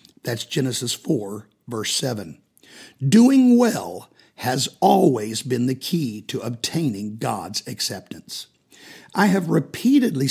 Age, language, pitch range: 50-69, English, 130-185 Hz